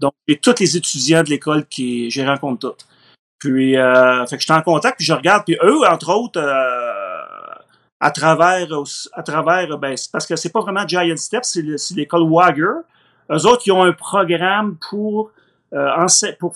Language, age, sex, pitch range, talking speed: French, 30-49, male, 150-190 Hz, 185 wpm